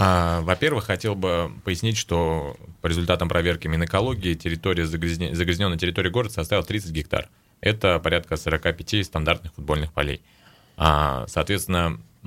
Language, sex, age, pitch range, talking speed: Russian, male, 30-49, 80-95 Hz, 110 wpm